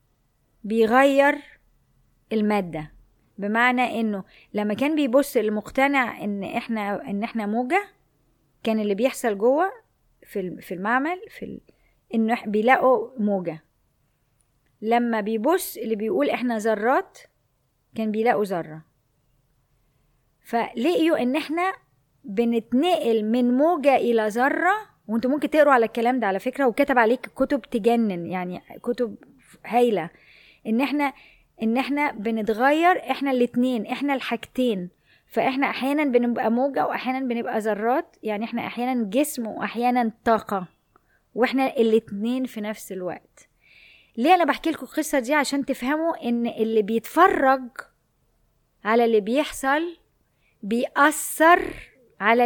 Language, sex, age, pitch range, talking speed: Arabic, female, 20-39, 220-280 Hz, 115 wpm